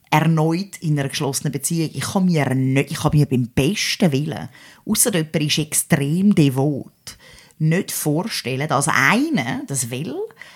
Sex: female